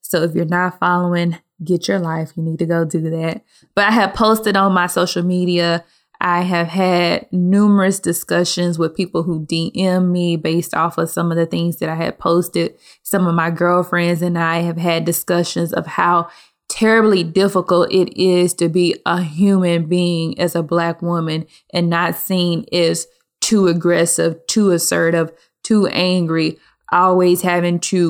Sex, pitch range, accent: female, 170-185 Hz, American